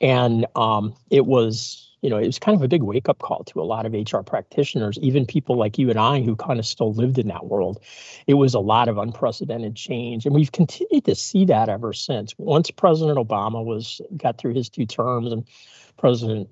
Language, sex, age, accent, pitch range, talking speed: English, male, 50-69, American, 110-135 Hz, 220 wpm